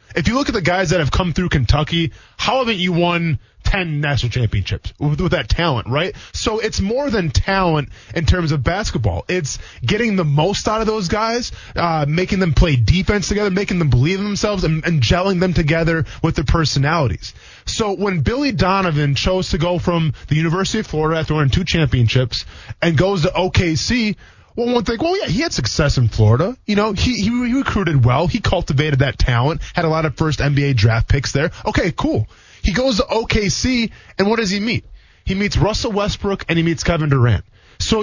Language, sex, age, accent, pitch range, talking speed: English, male, 20-39, American, 130-195 Hz, 205 wpm